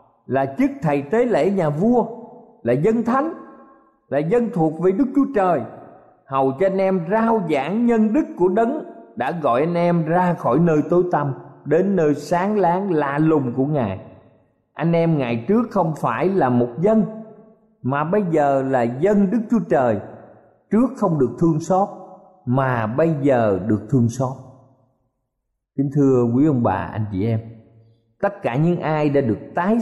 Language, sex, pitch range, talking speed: Vietnamese, male, 130-210 Hz, 175 wpm